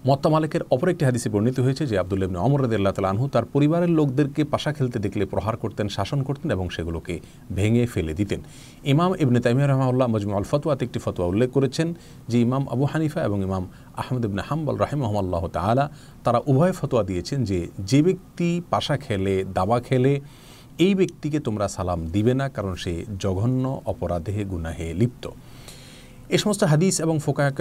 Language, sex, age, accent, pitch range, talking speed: Bengali, male, 40-59, native, 100-145 Hz, 150 wpm